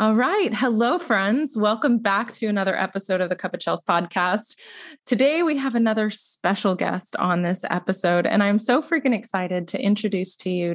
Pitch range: 180-220 Hz